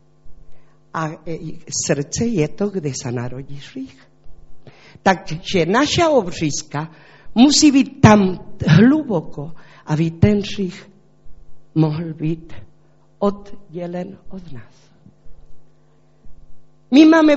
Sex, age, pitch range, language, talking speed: female, 50-69, 155-235 Hz, Czech, 85 wpm